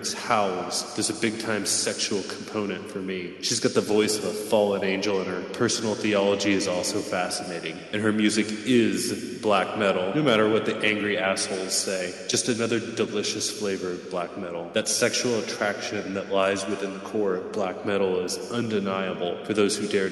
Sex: male